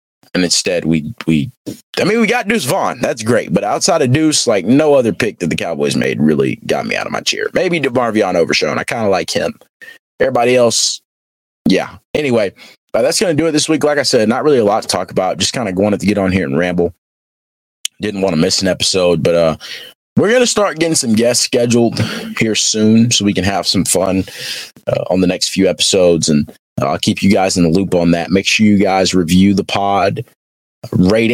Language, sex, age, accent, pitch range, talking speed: English, male, 30-49, American, 90-115 Hz, 230 wpm